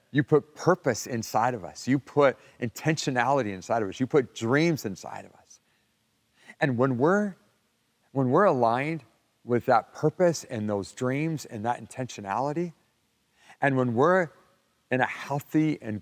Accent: American